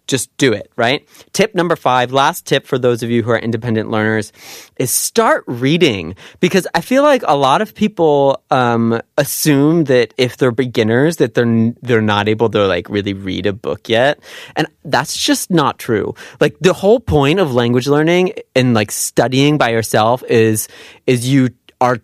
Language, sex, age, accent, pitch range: Korean, male, 30-49, American, 120-175 Hz